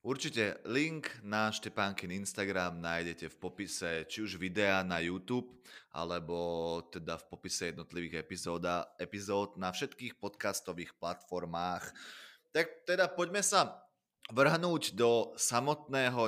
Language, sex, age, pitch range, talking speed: Slovak, male, 20-39, 95-125 Hz, 115 wpm